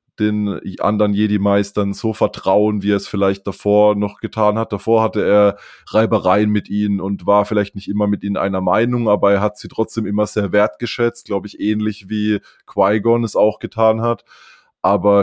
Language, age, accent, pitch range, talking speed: German, 20-39, German, 100-110 Hz, 180 wpm